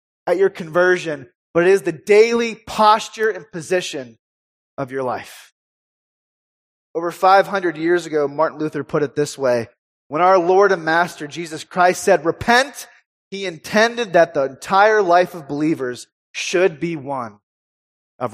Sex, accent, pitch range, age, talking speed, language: male, American, 145-200 Hz, 30-49, 145 wpm, English